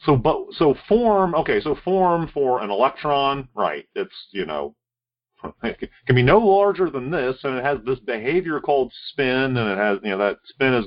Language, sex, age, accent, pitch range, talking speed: English, male, 40-59, American, 100-140 Hz, 200 wpm